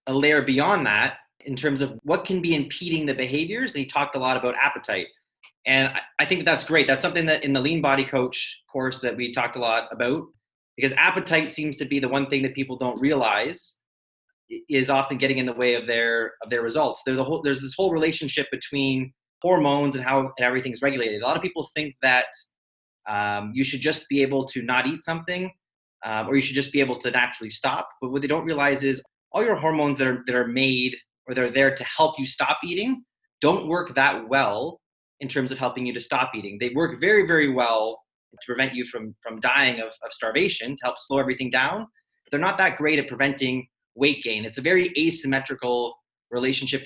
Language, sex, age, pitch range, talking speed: English, male, 30-49, 125-155 Hz, 220 wpm